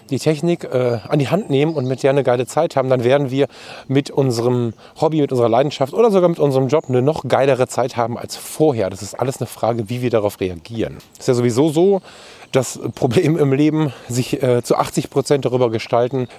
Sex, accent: male, German